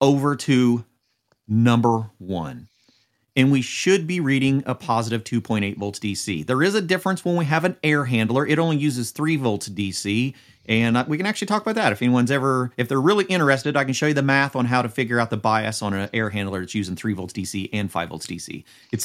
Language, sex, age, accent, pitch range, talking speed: English, male, 30-49, American, 110-155 Hz, 225 wpm